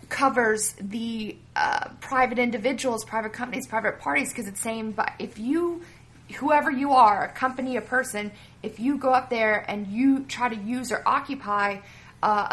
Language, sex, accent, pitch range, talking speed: English, female, American, 200-235 Hz, 165 wpm